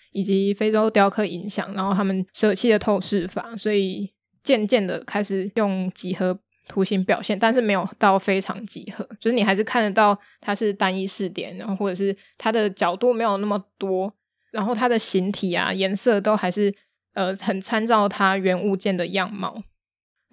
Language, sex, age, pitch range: Chinese, female, 20-39, 190-215 Hz